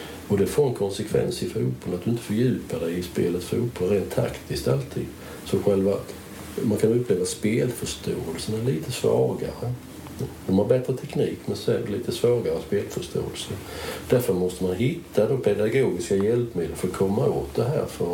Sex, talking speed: male, 170 wpm